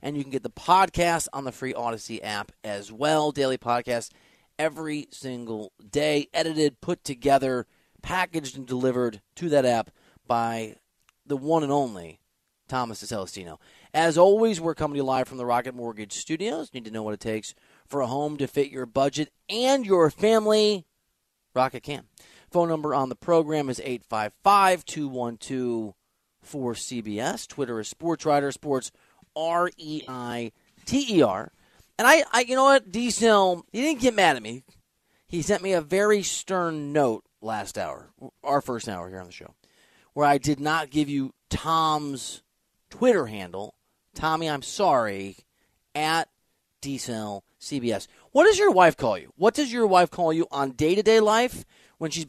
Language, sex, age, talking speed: English, male, 30-49, 155 wpm